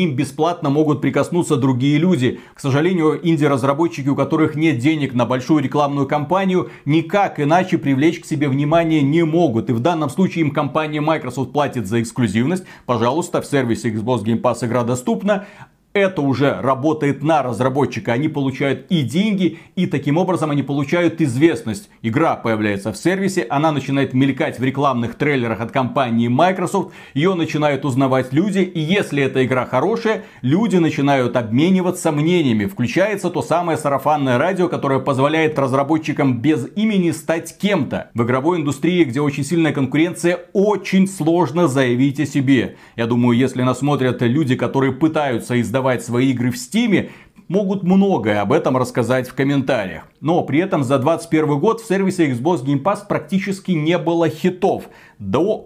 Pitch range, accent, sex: 130-170 Hz, native, male